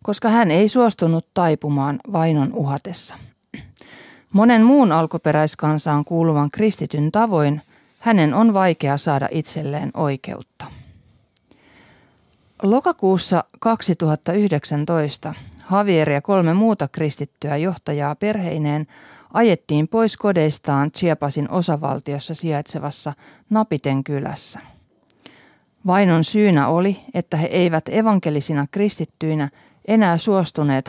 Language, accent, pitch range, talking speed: Finnish, native, 145-200 Hz, 90 wpm